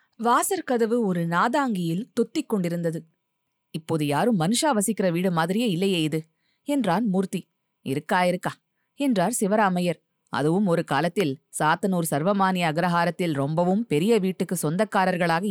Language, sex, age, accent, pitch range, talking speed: Tamil, female, 20-39, native, 165-220 Hz, 105 wpm